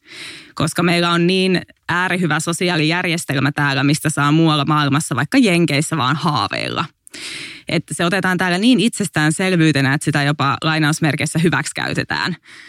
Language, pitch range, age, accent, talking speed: English, 145-170 Hz, 20-39, Finnish, 125 wpm